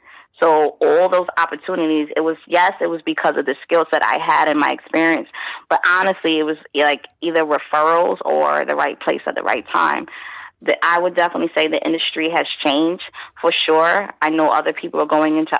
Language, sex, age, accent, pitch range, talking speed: English, female, 20-39, American, 155-175 Hz, 195 wpm